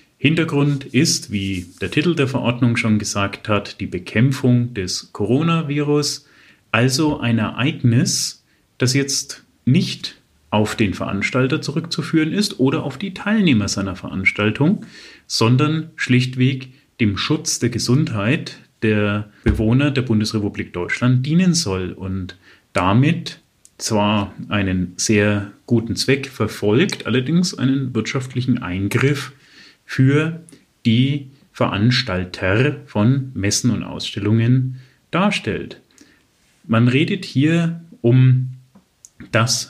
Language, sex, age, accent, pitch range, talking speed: German, male, 30-49, German, 105-140 Hz, 105 wpm